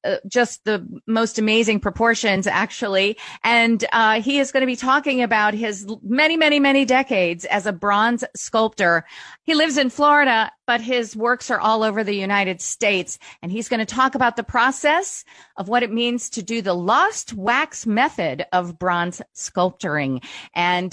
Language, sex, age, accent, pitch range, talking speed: English, female, 40-59, American, 200-275 Hz, 170 wpm